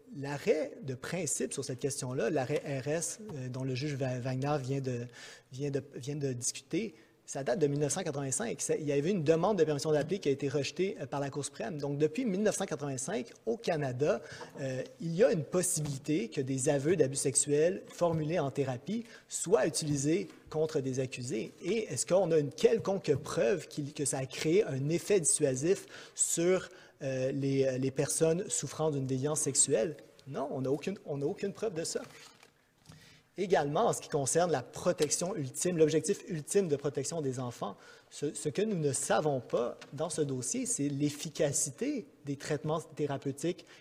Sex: male